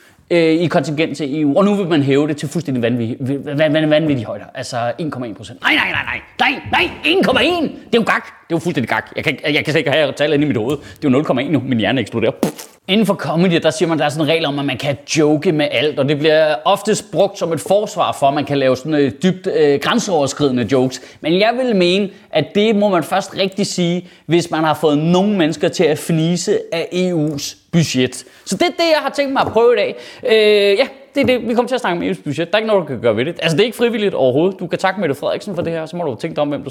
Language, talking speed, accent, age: Danish, 280 wpm, native, 30-49